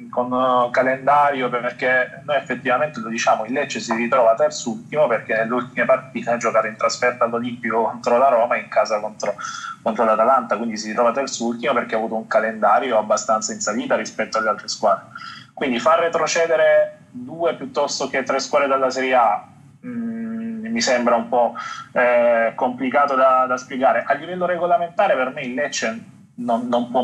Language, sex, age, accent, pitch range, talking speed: Italian, male, 20-39, native, 120-180 Hz, 170 wpm